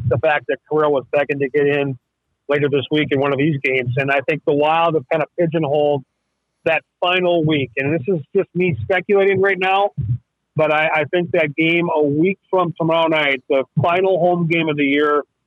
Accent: American